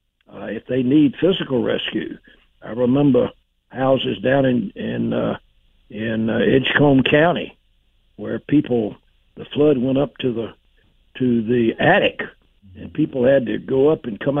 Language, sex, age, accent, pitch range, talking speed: English, male, 60-79, American, 115-145 Hz, 150 wpm